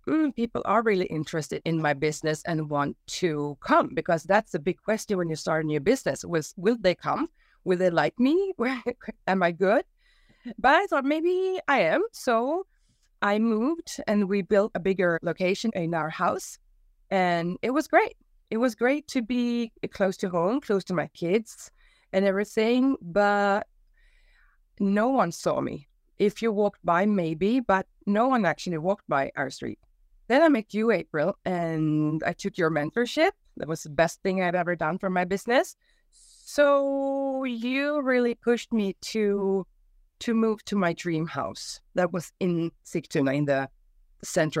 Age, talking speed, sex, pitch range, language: 30-49, 175 wpm, female, 165-235 Hz, English